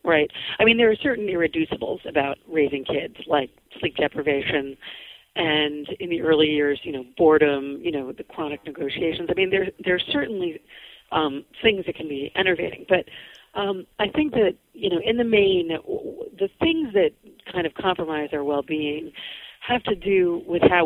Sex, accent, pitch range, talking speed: female, American, 150-210 Hz, 175 wpm